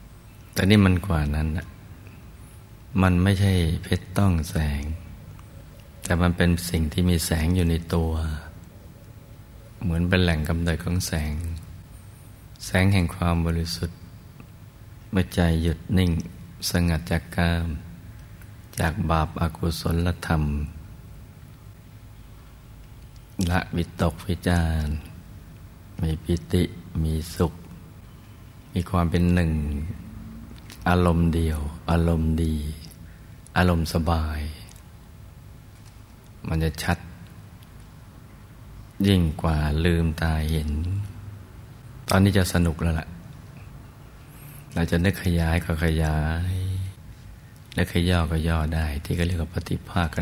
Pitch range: 85-105 Hz